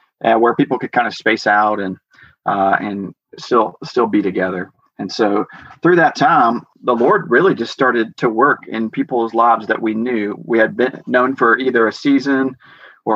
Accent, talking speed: American, 190 wpm